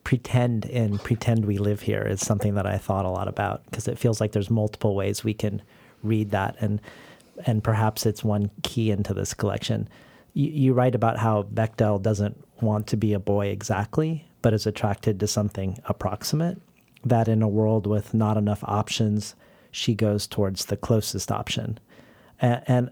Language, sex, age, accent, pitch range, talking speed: English, male, 40-59, American, 105-115 Hz, 180 wpm